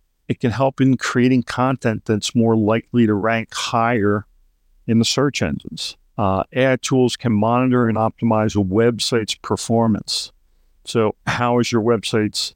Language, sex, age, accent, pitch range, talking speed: English, male, 50-69, American, 110-130 Hz, 150 wpm